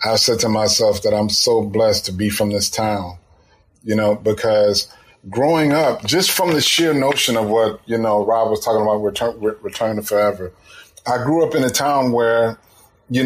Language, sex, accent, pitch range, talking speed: English, male, American, 105-125 Hz, 195 wpm